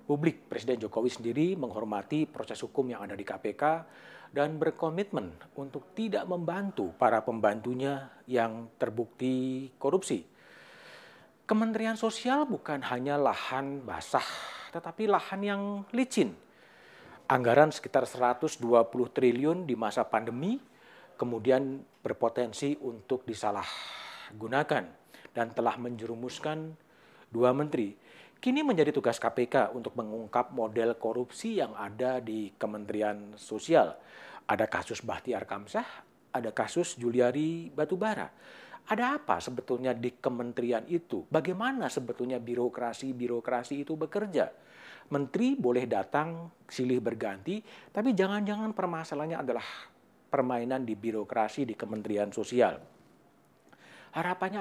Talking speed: 105 wpm